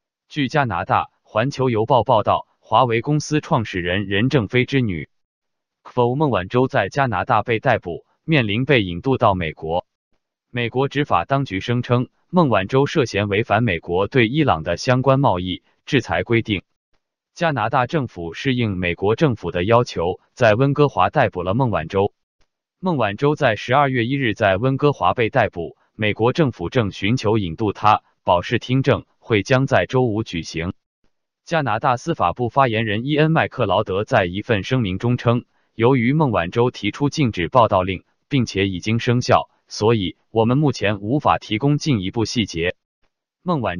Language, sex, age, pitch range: Chinese, male, 20-39, 100-140 Hz